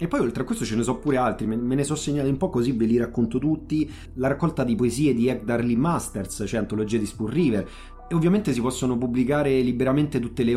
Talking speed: 240 wpm